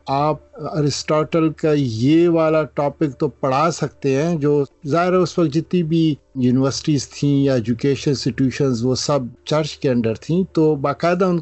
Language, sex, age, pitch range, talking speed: Urdu, male, 50-69, 125-160 Hz, 165 wpm